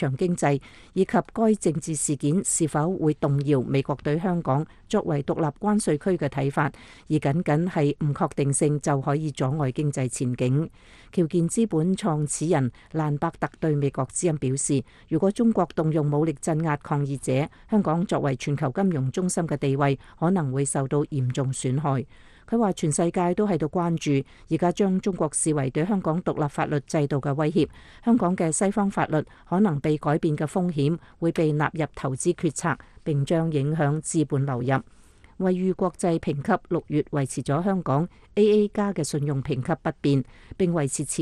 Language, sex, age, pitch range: English, female, 50-69, 140-175 Hz